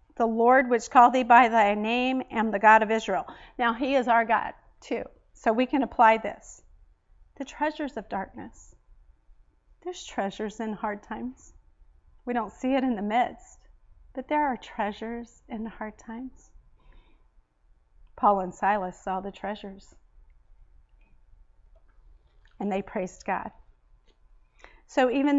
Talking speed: 140 wpm